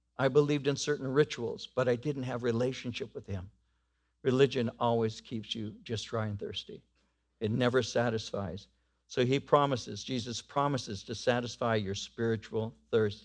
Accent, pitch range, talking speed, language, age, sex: American, 100-130 Hz, 150 wpm, English, 60-79, male